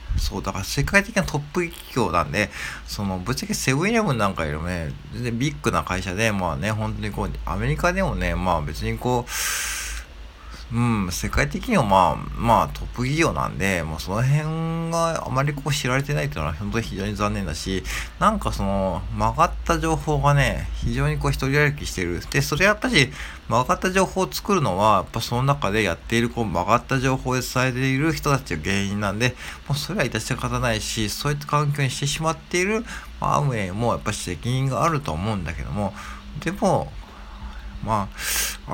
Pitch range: 90-135 Hz